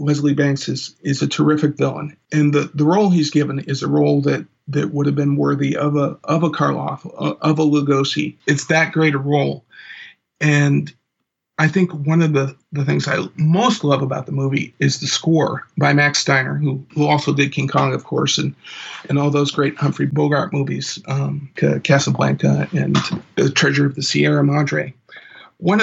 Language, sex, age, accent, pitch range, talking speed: English, male, 50-69, American, 140-155 Hz, 190 wpm